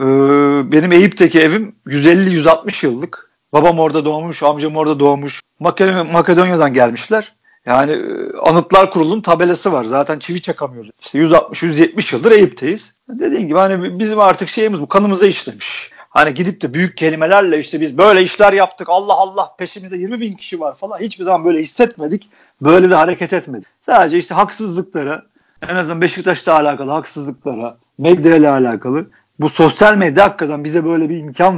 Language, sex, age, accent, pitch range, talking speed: Turkish, male, 50-69, native, 150-190 Hz, 150 wpm